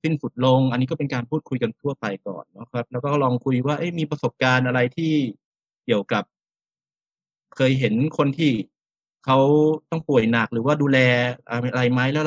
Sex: male